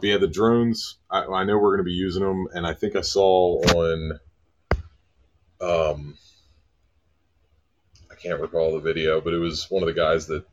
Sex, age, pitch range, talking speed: male, 30-49, 80-95 Hz, 180 wpm